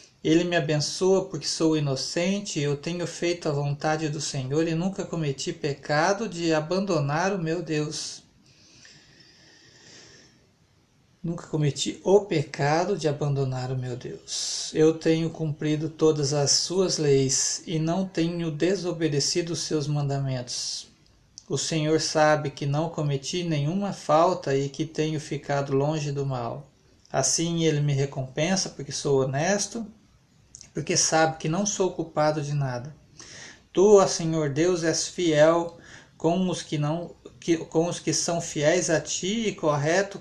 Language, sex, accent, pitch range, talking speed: Portuguese, male, Brazilian, 145-175 Hz, 135 wpm